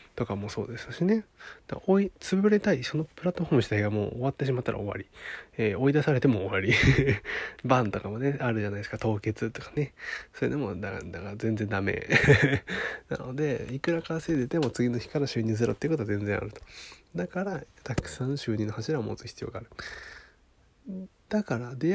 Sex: male